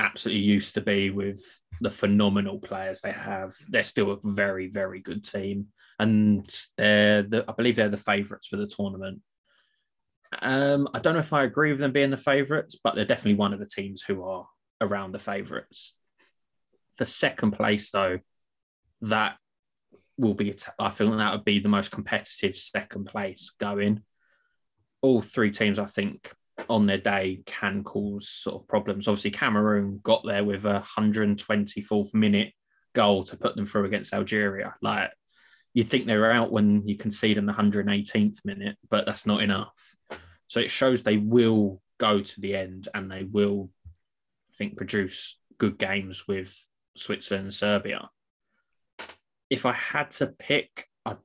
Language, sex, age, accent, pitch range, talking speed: English, male, 20-39, British, 100-110 Hz, 165 wpm